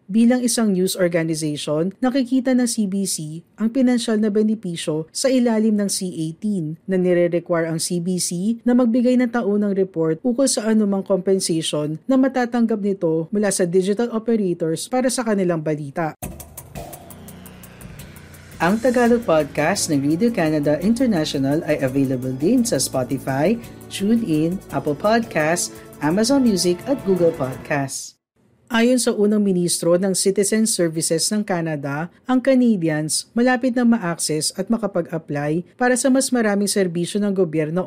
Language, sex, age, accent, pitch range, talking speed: Filipino, female, 50-69, native, 160-235 Hz, 130 wpm